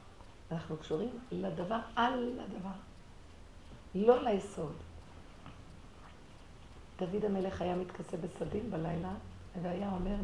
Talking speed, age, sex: 90 wpm, 50-69, female